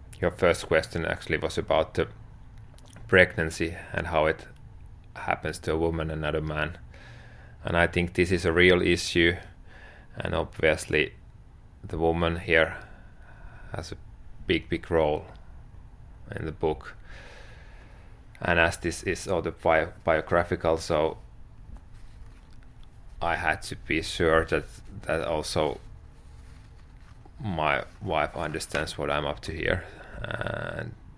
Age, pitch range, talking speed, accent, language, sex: 30-49, 80-100 Hz, 125 wpm, Finnish, English, male